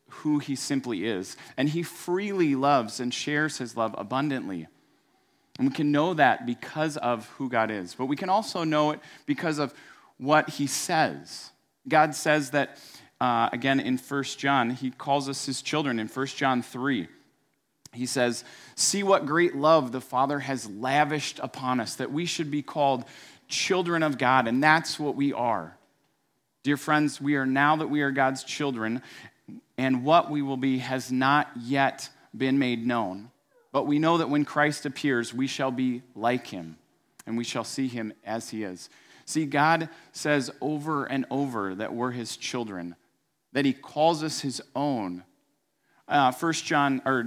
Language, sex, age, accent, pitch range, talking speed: English, male, 30-49, American, 125-150 Hz, 175 wpm